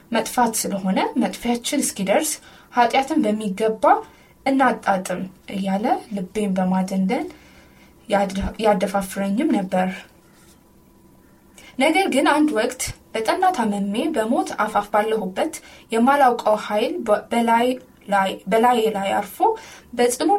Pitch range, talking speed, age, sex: 195-265 Hz, 90 wpm, 10-29, female